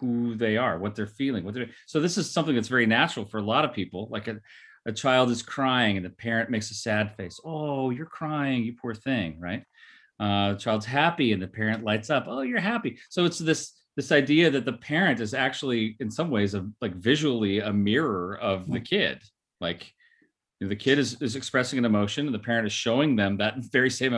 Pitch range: 105-130 Hz